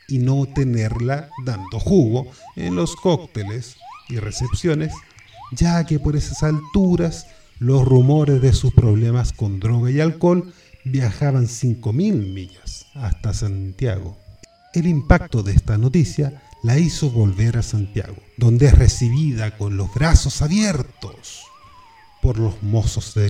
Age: 40-59